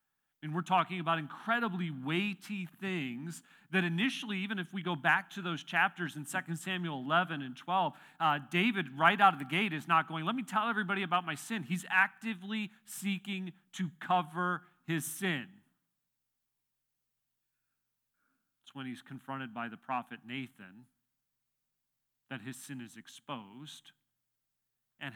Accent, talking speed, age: American, 145 wpm, 40-59